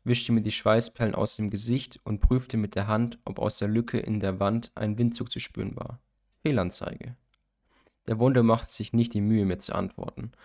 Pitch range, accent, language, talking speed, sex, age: 105-120 Hz, German, German, 200 wpm, male, 20-39